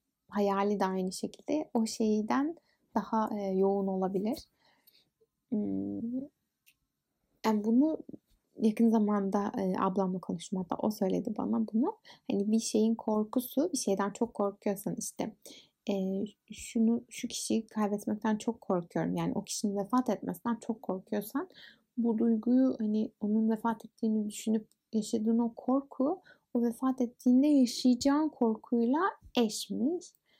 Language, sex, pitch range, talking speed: Turkish, female, 210-250 Hz, 120 wpm